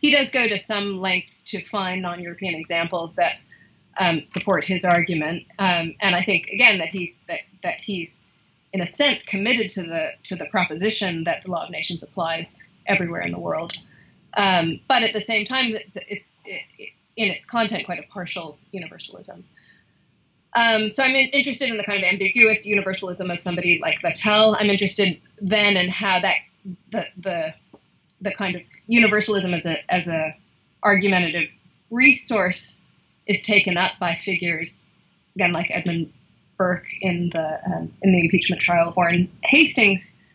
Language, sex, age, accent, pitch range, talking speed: English, female, 20-39, American, 175-210 Hz, 170 wpm